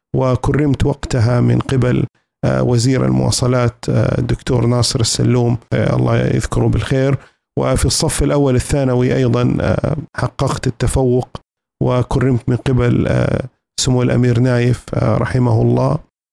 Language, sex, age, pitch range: Arabic, male, 50-69, 120-135 Hz